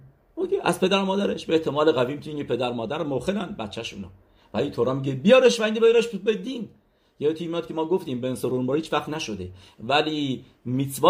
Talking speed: 190 wpm